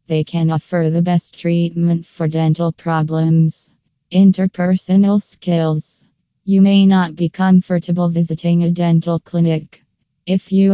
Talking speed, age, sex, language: 125 wpm, 20-39, female, English